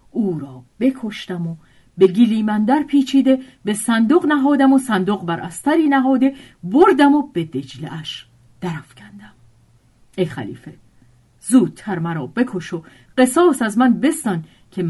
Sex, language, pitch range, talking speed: female, Persian, 165-250 Hz, 135 wpm